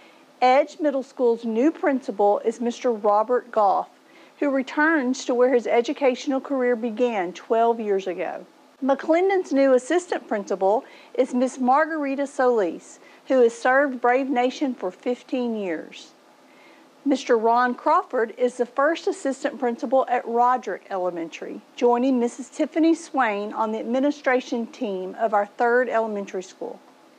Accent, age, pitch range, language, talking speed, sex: American, 50-69, 225-280 Hz, English, 130 wpm, female